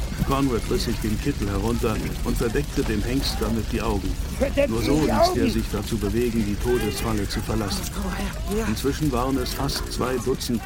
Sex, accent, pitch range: male, German, 105-130 Hz